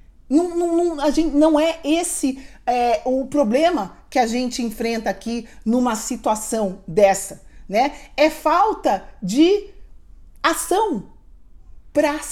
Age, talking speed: 40-59, 120 wpm